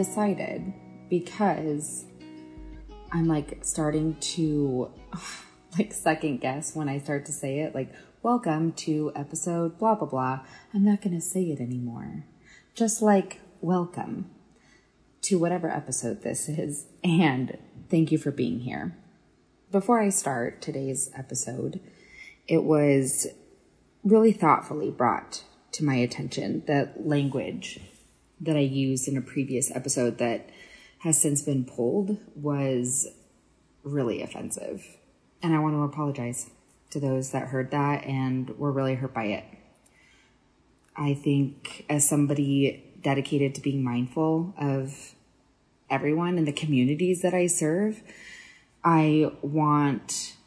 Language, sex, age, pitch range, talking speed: English, female, 20-39, 135-170 Hz, 125 wpm